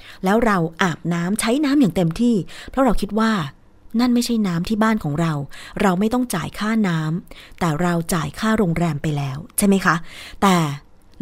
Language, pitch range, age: Thai, 160-205 Hz, 20-39